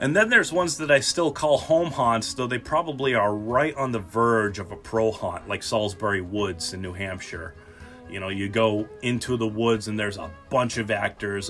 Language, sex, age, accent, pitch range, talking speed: English, male, 30-49, American, 95-125 Hz, 215 wpm